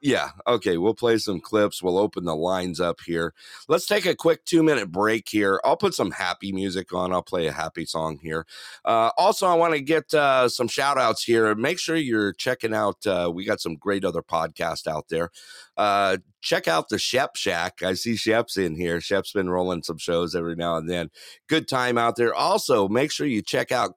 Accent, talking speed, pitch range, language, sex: American, 215 wpm, 85-125 Hz, English, male